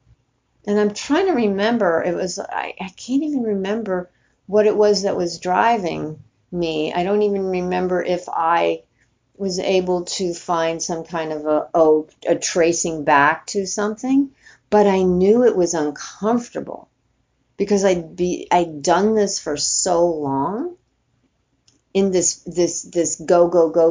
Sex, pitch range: female, 155-200 Hz